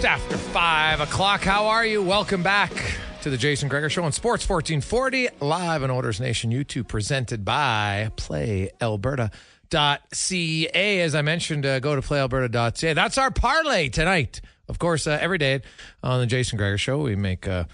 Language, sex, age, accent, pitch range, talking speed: English, male, 40-59, American, 100-150 Hz, 160 wpm